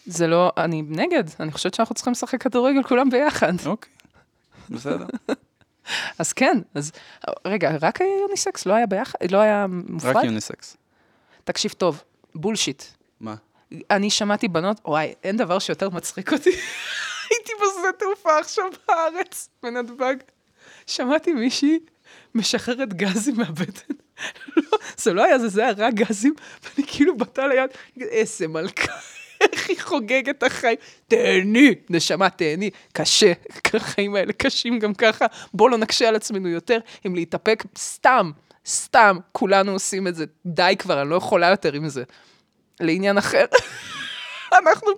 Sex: female